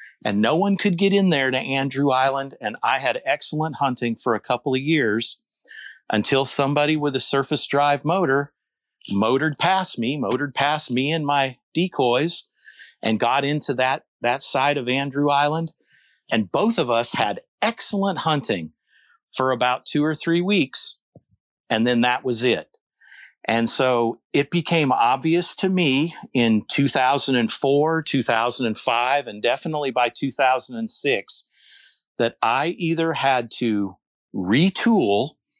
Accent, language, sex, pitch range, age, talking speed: American, English, male, 120-150 Hz, 40-59, 140 wpm